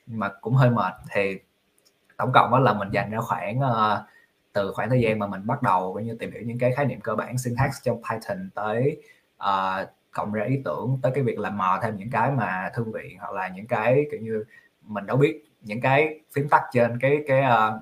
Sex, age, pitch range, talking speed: male, 20-39, 105-130 Hz, 230 wpm